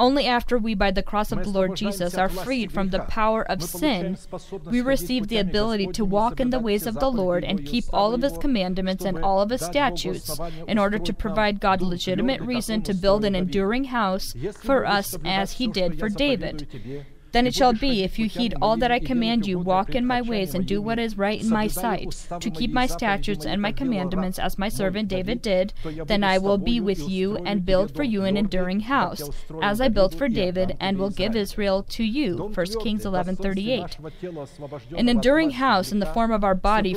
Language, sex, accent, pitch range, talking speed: English, female, American, 185-225 Hz, 215 wpm